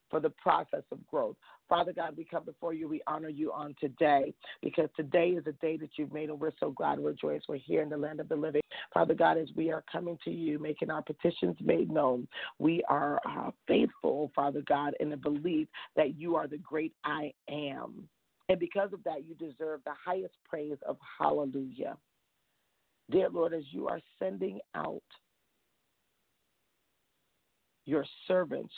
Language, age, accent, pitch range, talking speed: English, 40-59, American, 150-170 Hz, 180 wpm